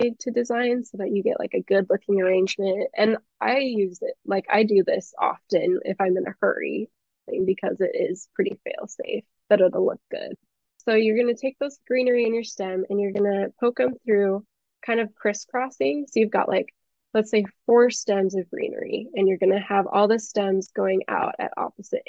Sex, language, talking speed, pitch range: female, English, 210 wpm, 195-245 Hz